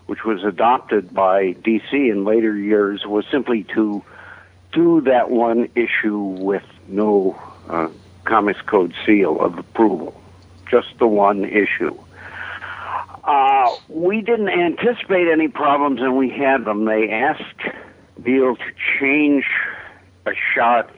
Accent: American